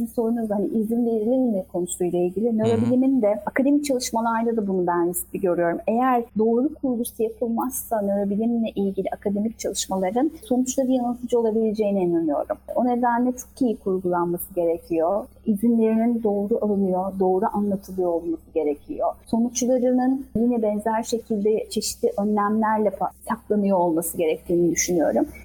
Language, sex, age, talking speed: Turkish, female, 30-49, 120 wpm